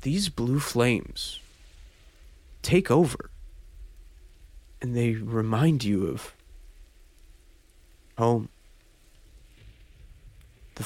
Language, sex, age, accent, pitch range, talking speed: English, male, 30-49, American, 80-120 Hz, 65 wpm